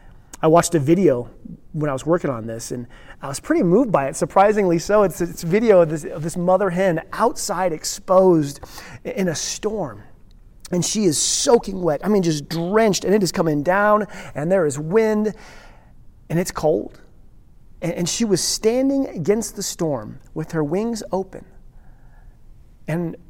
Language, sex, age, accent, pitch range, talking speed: English, male, 30-49, American, 145-195 Hz, 170 wpm